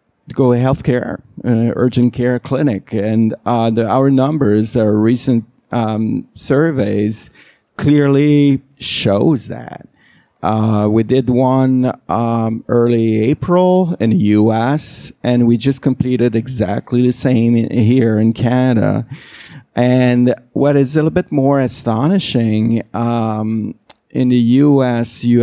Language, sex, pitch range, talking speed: English, male, 115-130 Hz, 125 wpm